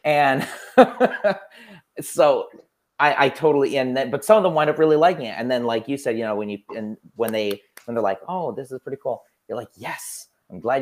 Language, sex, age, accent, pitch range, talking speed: English, male, 30-49, American, 105-140 Hz, 225 wpm